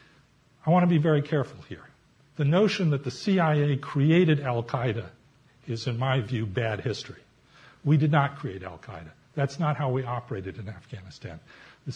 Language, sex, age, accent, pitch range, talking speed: English, male, 50-69, American, 130-165 Hz, 165 wpm